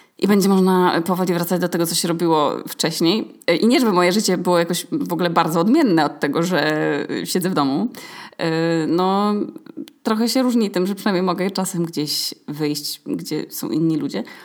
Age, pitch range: 20-39, 170-225 Hz